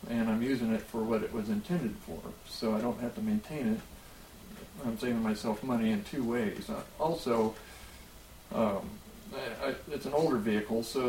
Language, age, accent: English, 40-59, American